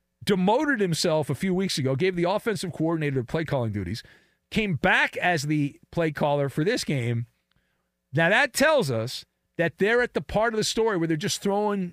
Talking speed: 180 wpm